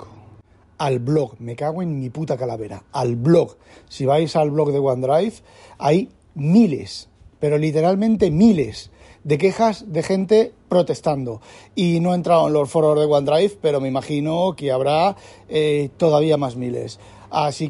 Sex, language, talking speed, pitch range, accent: male, Spanish, 155 wpm, 130-160 Hz, Spanish